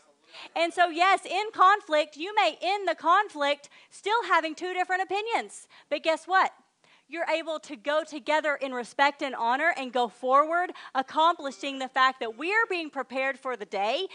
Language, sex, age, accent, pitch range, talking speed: English, female, 40-59, American, 260-345 Hz, 175 wpm